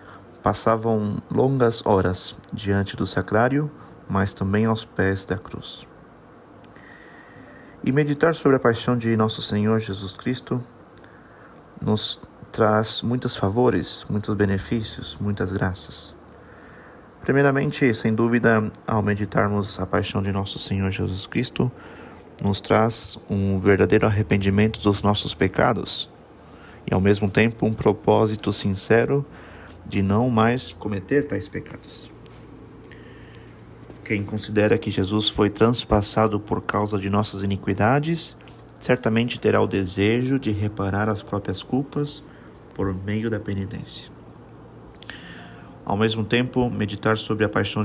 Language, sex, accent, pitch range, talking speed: Portuguese, male, Brazilian, 100-115 Hz, 120 wpm